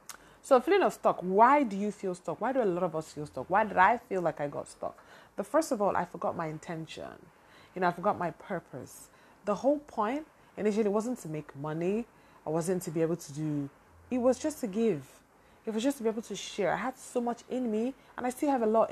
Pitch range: 180-235 Hz